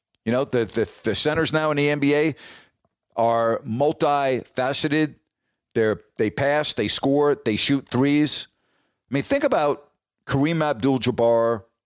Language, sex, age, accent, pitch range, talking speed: English, male, 50-69, American, 125-165 Hz, 130 wpm